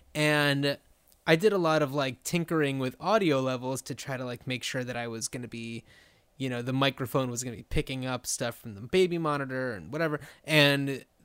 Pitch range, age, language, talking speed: 130-160 Hz, 20-39, English, 220 wpm